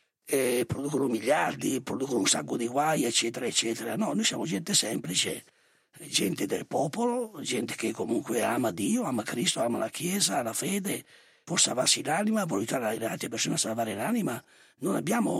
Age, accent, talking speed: 50-69, Italian, 170 wpm